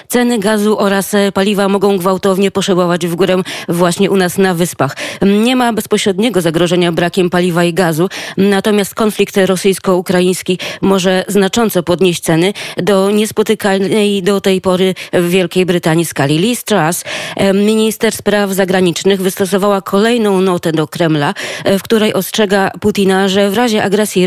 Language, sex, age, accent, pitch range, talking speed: Polish, female, 20-39, native, 185-210 Hz, 140 wpm